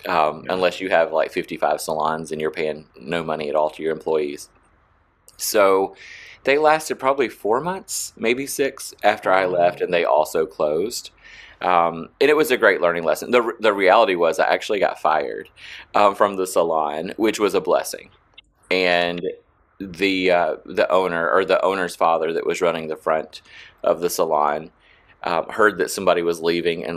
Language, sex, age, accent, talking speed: English, male, 30-49, American, 180 wpm